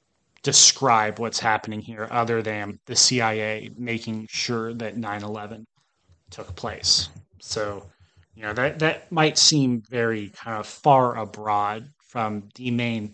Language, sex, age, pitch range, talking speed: English, male, 30-49, 110-125 Hz, 130 wpm